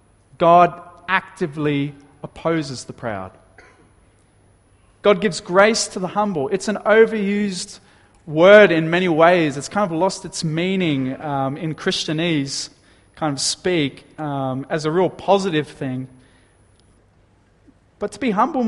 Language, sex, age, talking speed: English, male, 30-49, 130 wpm